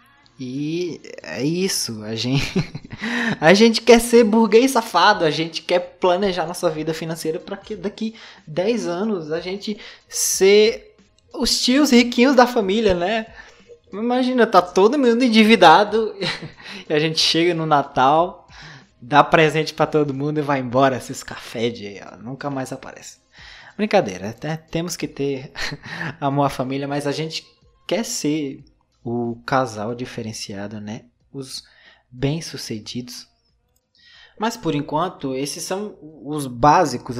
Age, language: 20-39, Portuguese